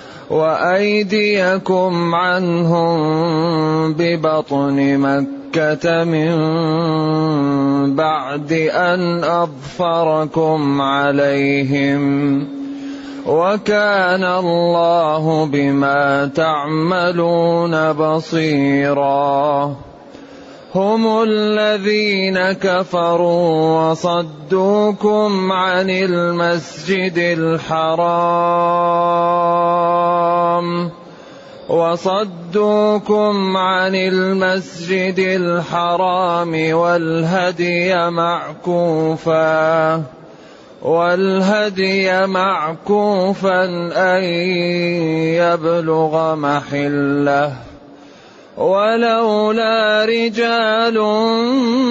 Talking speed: 40 wpm